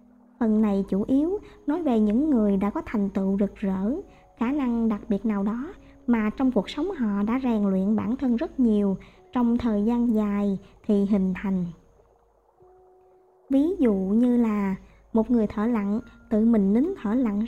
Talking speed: 180 wpm